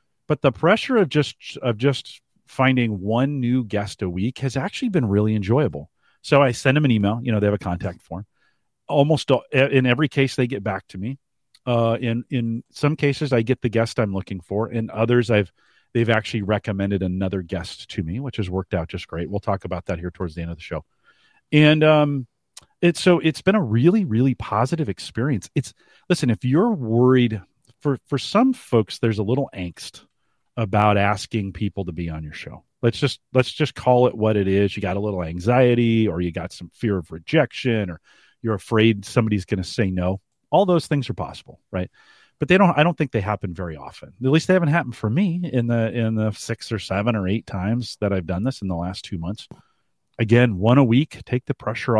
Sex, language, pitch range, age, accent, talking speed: male, English, 100-140 Hz, 40-59, American, 220 wpm